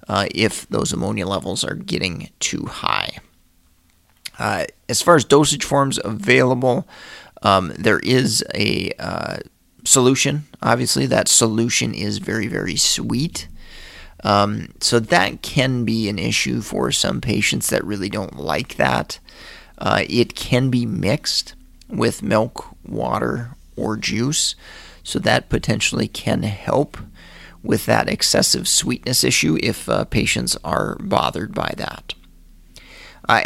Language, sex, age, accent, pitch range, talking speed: English, male, 30-49, American, 95-120 Hz, 130 wpm